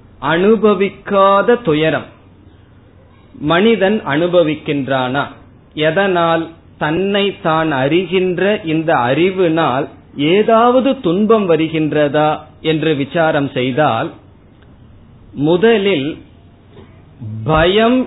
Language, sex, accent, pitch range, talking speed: Tamil, male, native, 135-185 Hz, 60 wpm